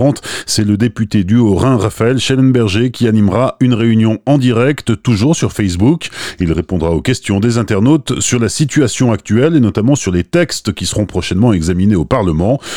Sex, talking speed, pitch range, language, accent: male, 175 wpm, 95-125 Hz, French, French